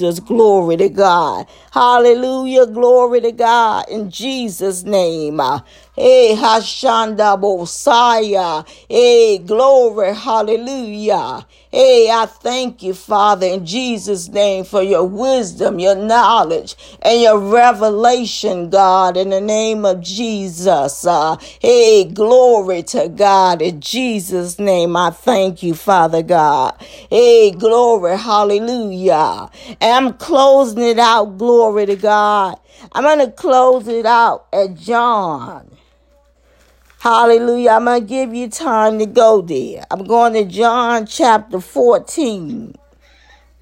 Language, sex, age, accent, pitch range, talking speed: English, female, 50-69, American, 195-245 Hz, 120 wpm